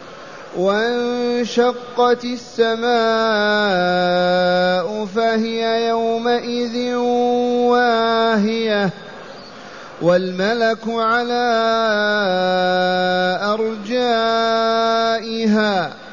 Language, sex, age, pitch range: Arabic, male, 30-49, 215-245 Hz